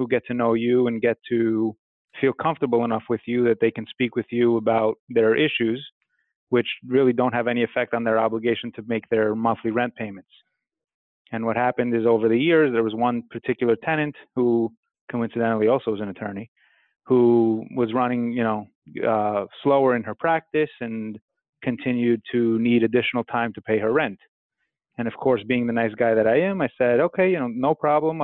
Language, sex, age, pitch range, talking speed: English, male, 30-49, 115-130 Hz, 195 wpm